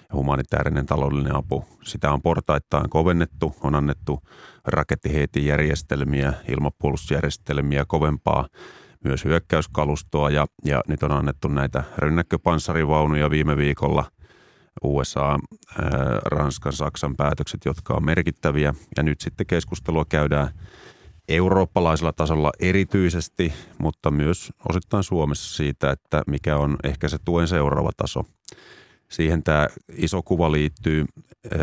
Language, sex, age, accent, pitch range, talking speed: Finnish, male, 30-49, native, 70-85 Hz, 110 wpm